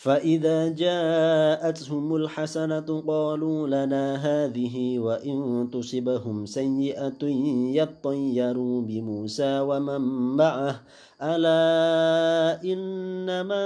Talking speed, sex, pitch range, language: 65 wpm, male, 125-155 Hz, Arabic